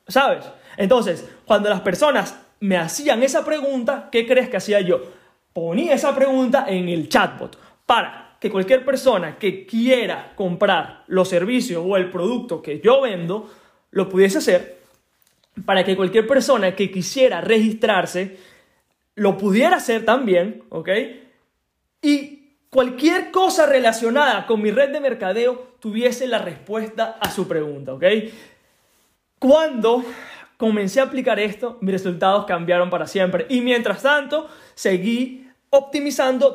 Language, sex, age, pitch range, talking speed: Spanish, male, 20-39, 190-270 Hz, 135 wpm